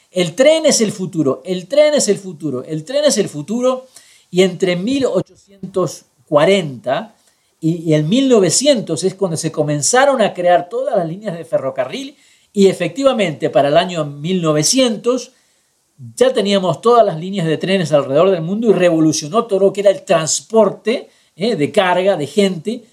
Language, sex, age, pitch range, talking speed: Spanish, male, 50-69, 155-215 Hz, 160 wpm